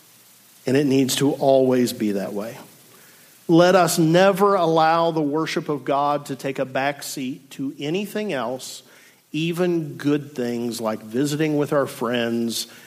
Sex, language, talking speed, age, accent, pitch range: male, English, 145 wpm, 50-69, American, 130-180 Hz